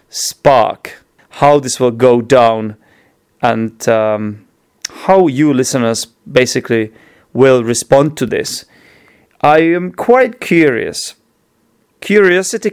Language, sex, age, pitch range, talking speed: English, male, 30-49, 130-170 Hz, 100 wpm